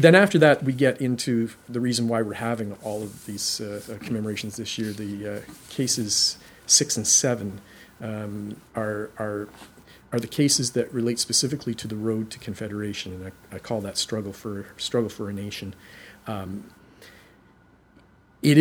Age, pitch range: 40-59, 105-120 Hz